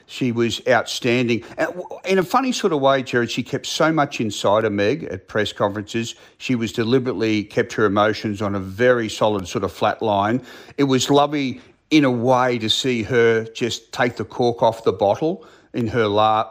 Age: 40-59